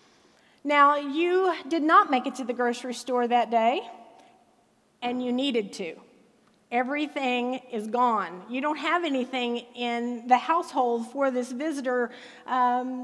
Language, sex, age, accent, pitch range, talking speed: English, female, 40-59, American, 240-300 Hz, 140 wpm